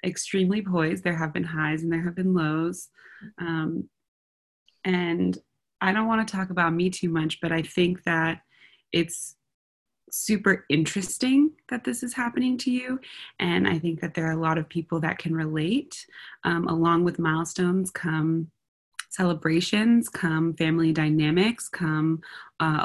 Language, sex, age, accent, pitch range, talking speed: English, female, 20-39, American, 155-175 Hz, 155 wpm